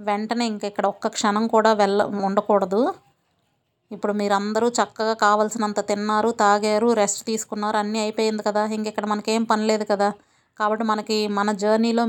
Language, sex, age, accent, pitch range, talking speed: Telugu, female, 30-49, native, 210-230 Hz, 145 wpm